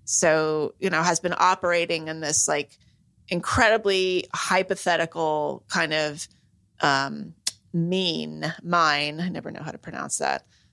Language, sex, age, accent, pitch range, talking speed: English, female, 30-49, American, 160-195 Hz, 130 wpm